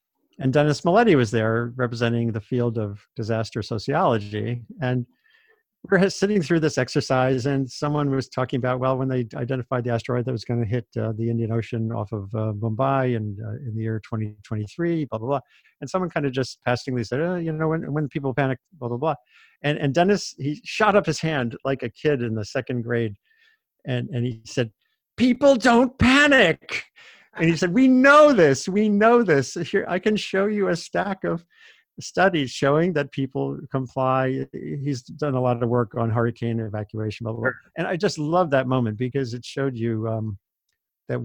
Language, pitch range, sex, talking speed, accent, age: English, 115-160 Hz, male, 195 wpm, American, 50-69